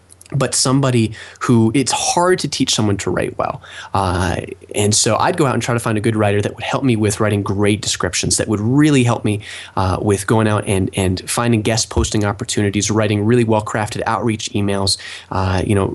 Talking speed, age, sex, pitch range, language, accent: 205 wpm, 20-39, male, 100-120 Hz, English, American